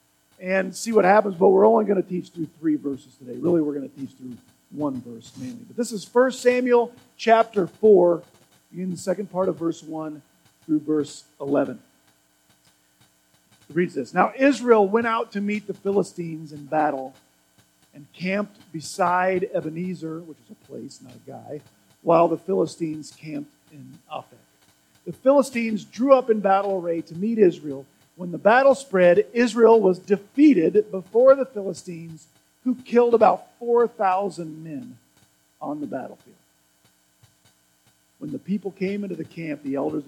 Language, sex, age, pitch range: English, male, 50-69, 145-220 Hz